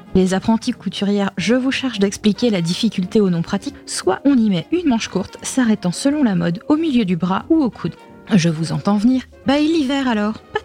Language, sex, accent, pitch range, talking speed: French, female, French, 195-260 Hz, 225 wpm